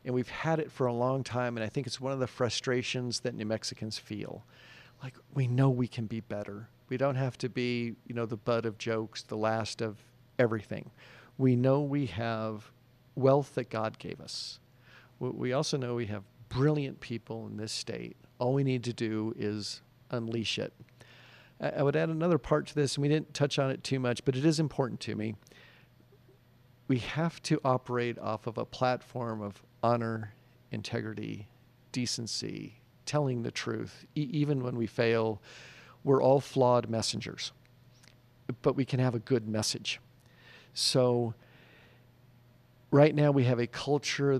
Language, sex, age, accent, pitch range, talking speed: English, male, 50-69, American, 115-135 Hz, 175 wpm